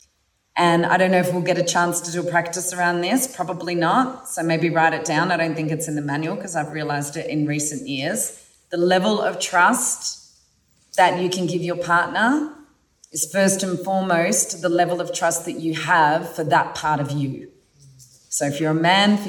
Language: English